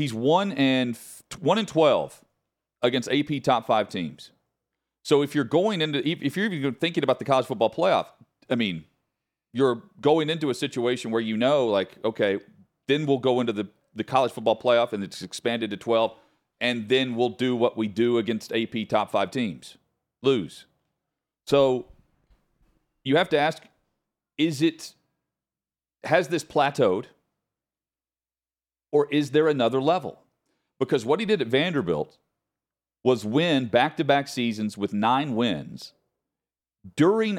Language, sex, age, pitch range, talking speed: English, male, 40-59, 110-145 Hz, 150 wpm